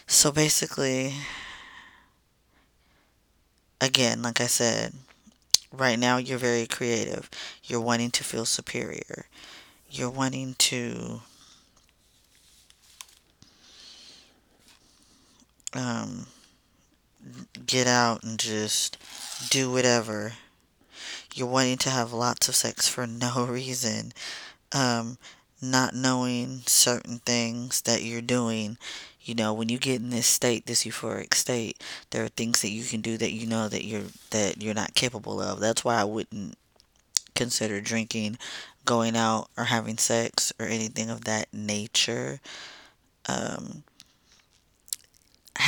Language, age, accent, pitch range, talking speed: English, 20-39, American, 110-125 Hz, 115 wpm